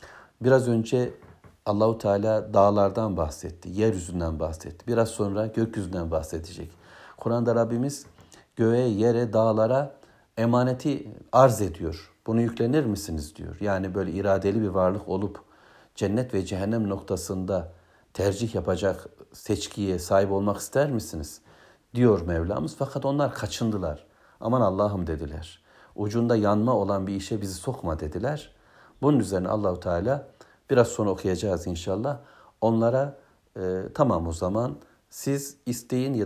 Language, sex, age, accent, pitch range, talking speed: Turkish, male, 60-79, native, 95-120 Hz, 120 wpm